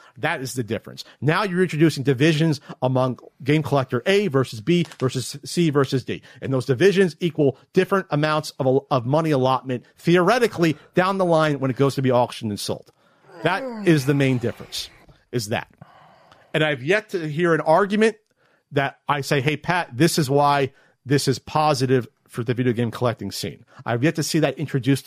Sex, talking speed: male, 185 wpm